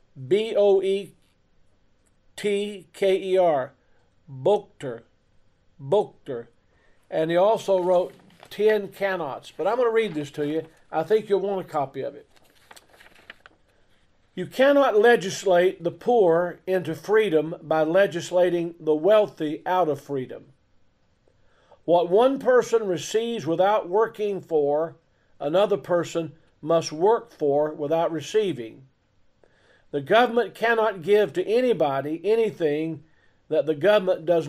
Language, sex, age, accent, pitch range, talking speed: English, male, 50-69, American, 150-205 Hz, 110 wpm